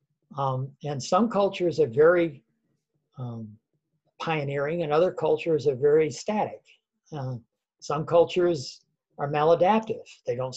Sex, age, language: male, 60-79, English